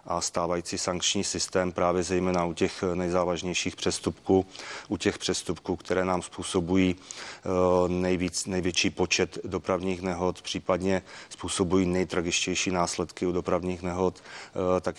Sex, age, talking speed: male, 30-49, 115 wpm